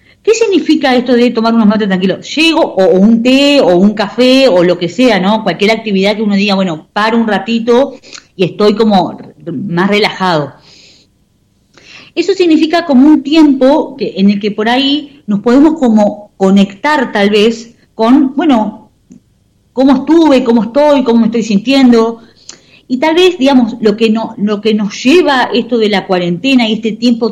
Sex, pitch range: female, 200-275 Hz